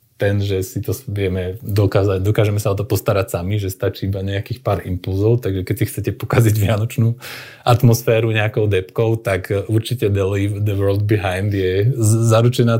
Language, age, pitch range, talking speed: Slovak, 30-49, 95-115 Hz, 170 wpm